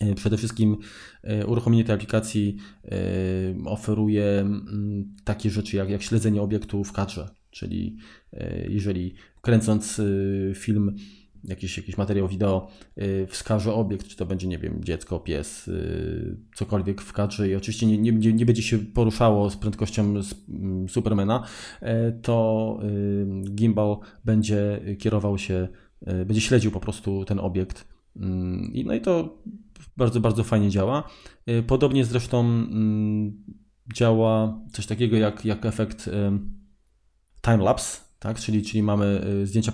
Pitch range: 100-110 Hz